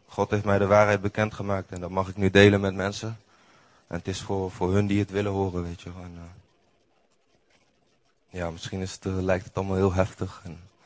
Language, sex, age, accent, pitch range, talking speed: Dutch, male, 20-39, Dutch, 95-110 Hz, 200 wpm